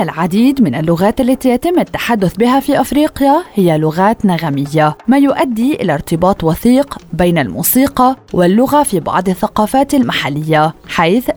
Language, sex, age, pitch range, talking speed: Arabic, female, 20-39, 170-260 Hz, 130 wpm